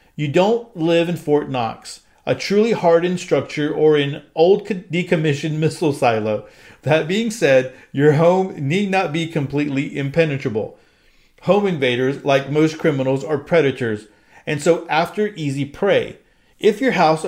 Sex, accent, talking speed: male, American, 140 wpm